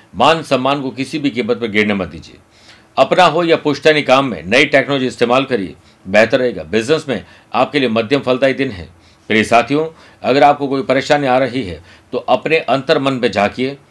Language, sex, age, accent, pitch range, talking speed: Hindi, male, 60-79, native, 115-140 Hz, 195 wpm